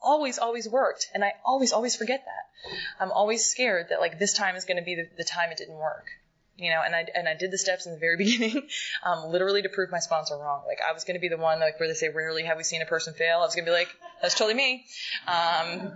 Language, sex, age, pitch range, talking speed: English, female, 20-39, 160-210 Hz, 280 wpm